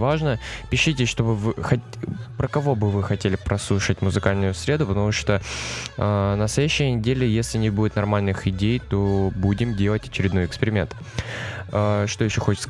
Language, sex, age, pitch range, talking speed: Russian, male, 20-39, 95-120 Hz, 140 wpm